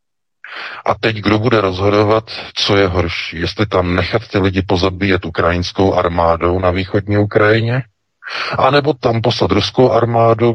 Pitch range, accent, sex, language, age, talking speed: 85-105 Hz, native, male, Czech, 50-69, 135 wpm